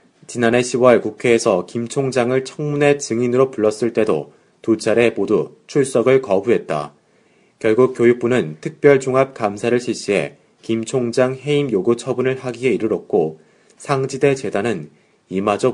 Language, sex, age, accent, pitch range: Korean, male, 30-49, native, 115-135 Hz